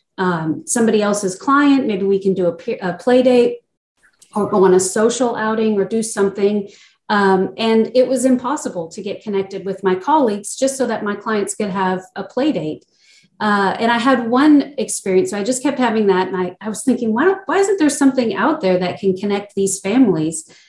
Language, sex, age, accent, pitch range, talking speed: English, female, 40-59, American, 185-235 Hz, 210 wpm